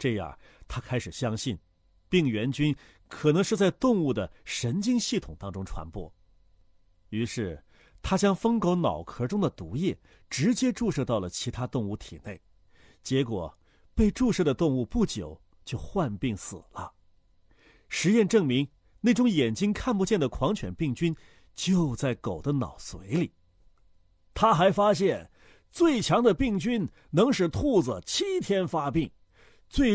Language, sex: Chinese, male